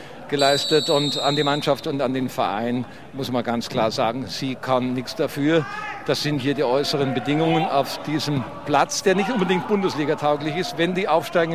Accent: German